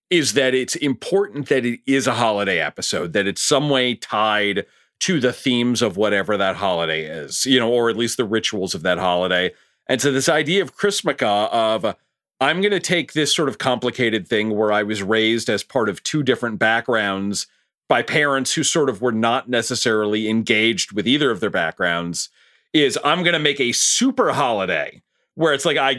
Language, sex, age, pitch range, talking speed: English, male, 40-59, 110-150 Hz, 195 wpm